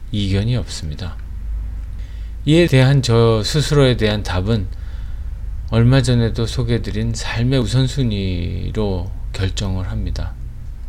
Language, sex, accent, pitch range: Korean, male, native, 95-120 Hz